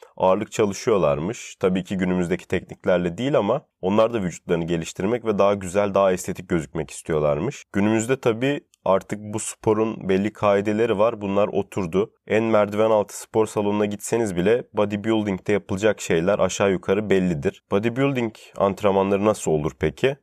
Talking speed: 140 wpm